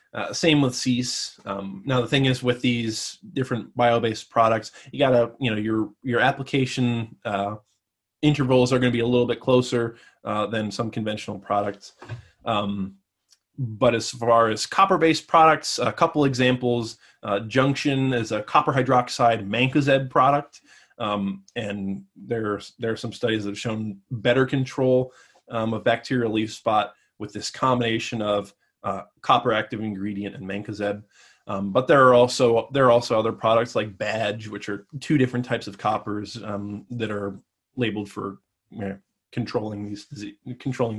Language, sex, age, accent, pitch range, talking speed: English, male, 20-39, American, 105-130 Hz, 165 wpm